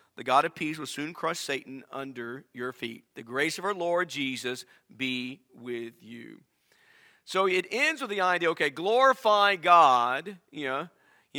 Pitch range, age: 155-200 Hz, 50-69